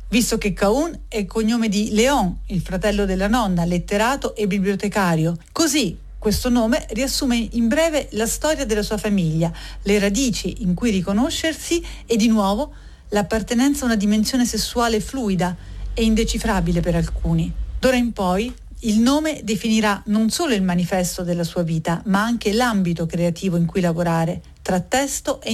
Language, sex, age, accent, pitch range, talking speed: Italian, female, 40-59, native, 185-240 Hz, 155 wpm